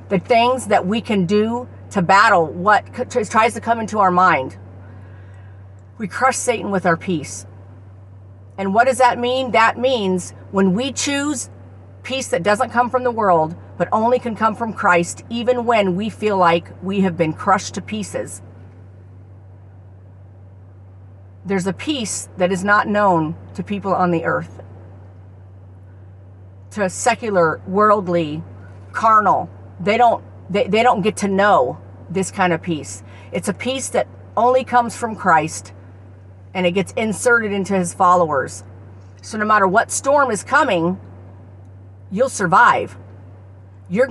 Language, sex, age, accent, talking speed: English, female, 50-69, American, 150 wpm